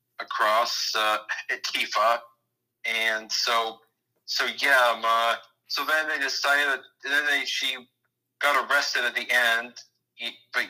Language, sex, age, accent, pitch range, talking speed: English, male, 40-59, American, 115-135 Hz, 125 wpm